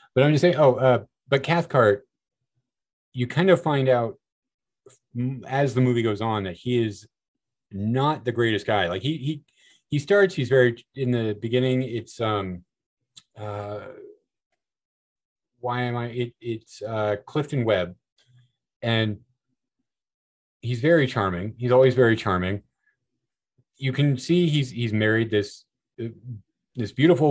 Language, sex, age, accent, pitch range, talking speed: English, male, 30-49, American, 105-130 Hz, 140 wpm